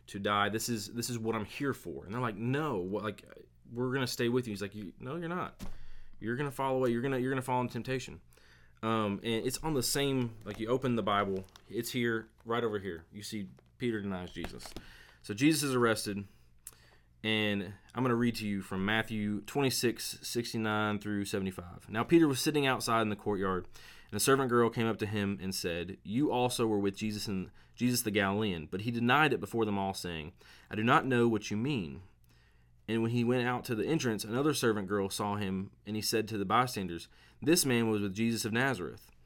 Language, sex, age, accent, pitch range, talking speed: English, male, 30-49, American, 95-120 Hz, 215 wpm